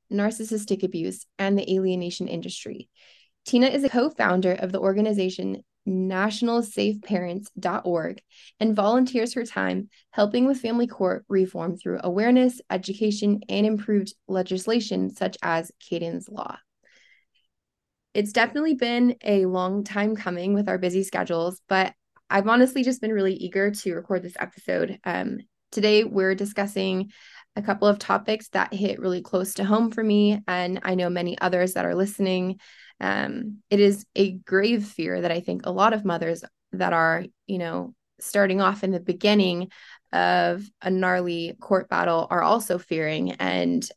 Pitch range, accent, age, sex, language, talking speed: 180-215 Hz, American, 20-39, female, English, 150 wpm